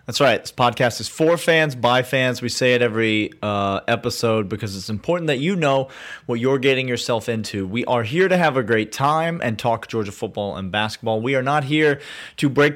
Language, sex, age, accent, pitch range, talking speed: English, male, 30-49, American, 105-135 Hz, 215 wpm